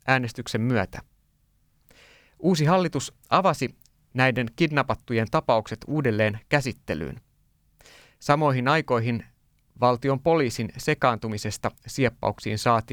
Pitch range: 110-135 Hz